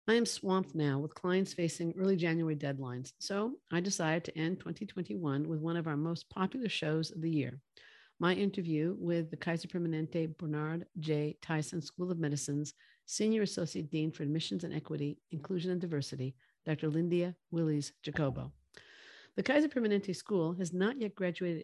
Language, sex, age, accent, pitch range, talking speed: English, female, 50-69, American, 150-185 Hz, 165 wpm